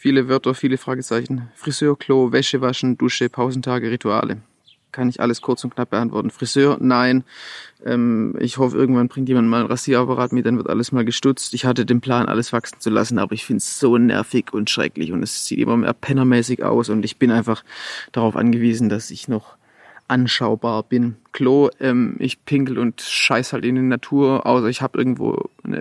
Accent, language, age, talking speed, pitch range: German, German, 30-49, 195 wpm, 120-135 Hz